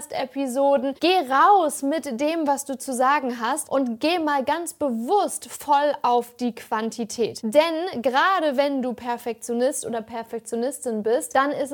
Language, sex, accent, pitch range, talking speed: German, female, German, 240-295 Hz, 150 wpm